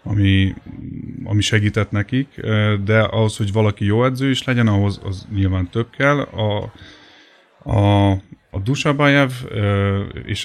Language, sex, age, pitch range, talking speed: Hungarian, male, 30-49, 100-115 Hz, 120 wpm